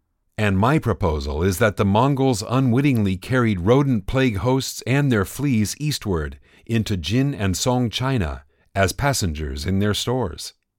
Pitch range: 80-115 Hz